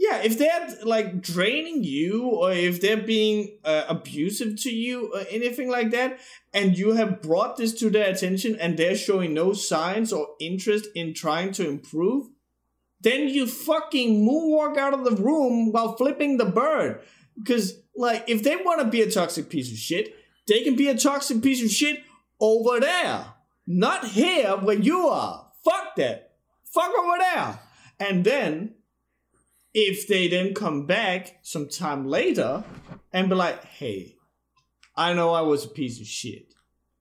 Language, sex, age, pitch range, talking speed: English, male, 30-49, 165-245 Hz, 165 wpm